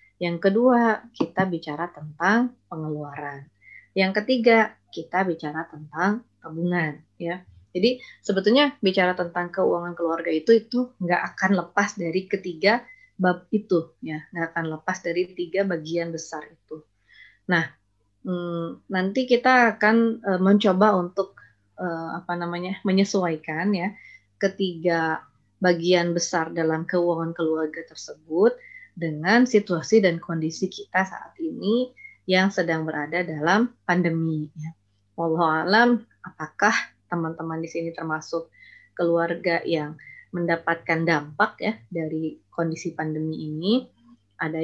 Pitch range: 160-195 Hz